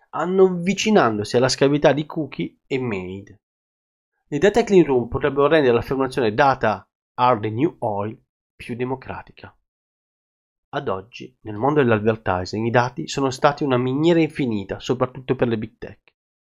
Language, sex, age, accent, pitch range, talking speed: Italian, male, 30-49, native, 115-155 Hz, 140 wpm